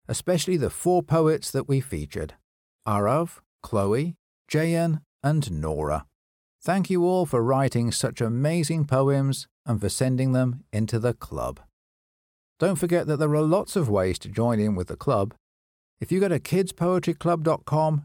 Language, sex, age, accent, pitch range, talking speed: English, male, 50-69, British, 100-160 Hz, 155 wpm